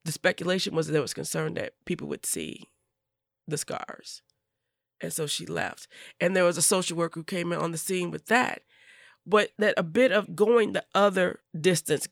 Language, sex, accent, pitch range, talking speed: English, female, American, 170-215 Hz, 200 wpm